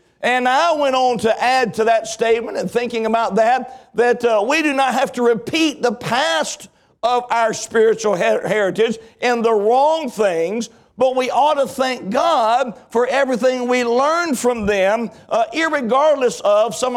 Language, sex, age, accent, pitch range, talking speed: English, male, 60-79, American, 225-260 Hz, 165 wpm